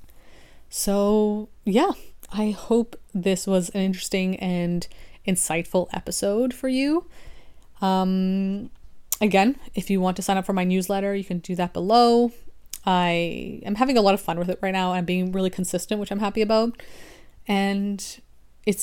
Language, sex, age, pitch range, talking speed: English, female, 30-49, 180-215 Hz, 160 wpm